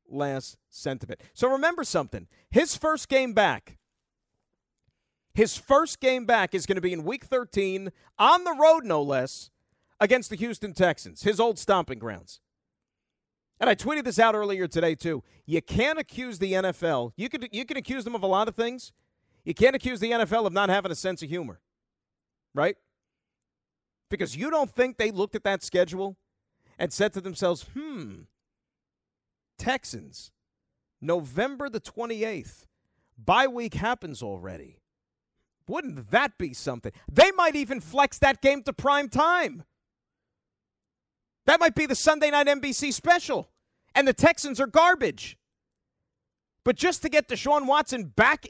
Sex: male